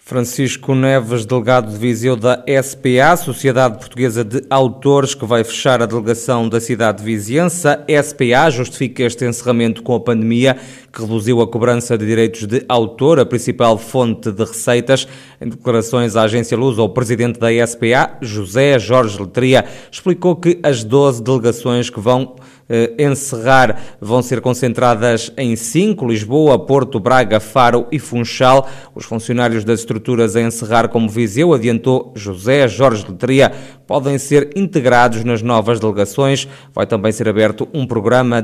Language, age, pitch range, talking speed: Portuguese, 20-39, 115-135 Hz, 150 wpm